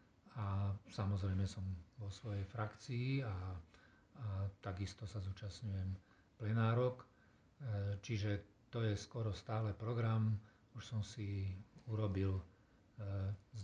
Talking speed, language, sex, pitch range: 100 wpm, Slovak, male, 95-110 Hz